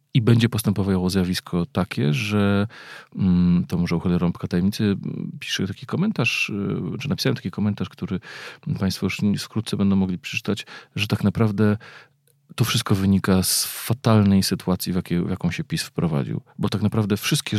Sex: male